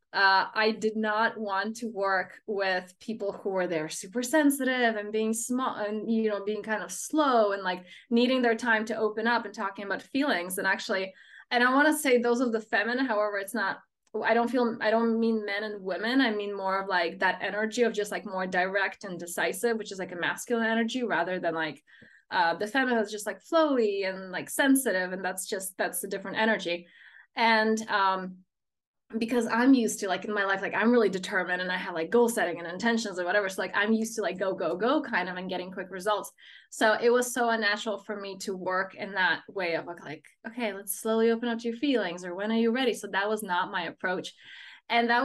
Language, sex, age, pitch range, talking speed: English, female, 20-39, 190-230 Hz, 230 wpm